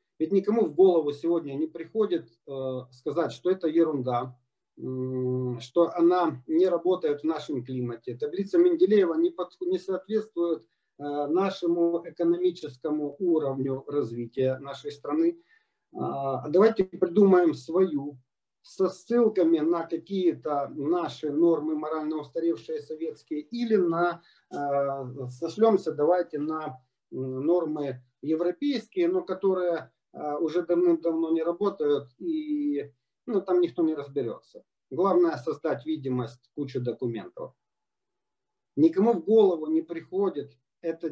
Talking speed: 115 wpm